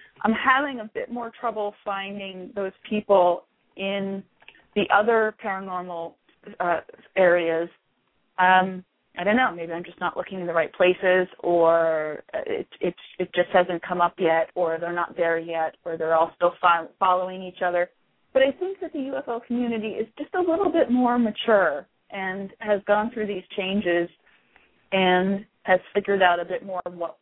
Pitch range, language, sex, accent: 170-210 Hz, English, female, American